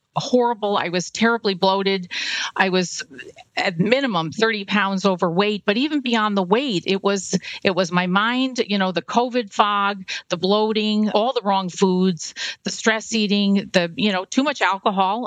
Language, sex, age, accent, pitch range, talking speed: English, female, 40-59, American, 190-230 Hz, 170 wpm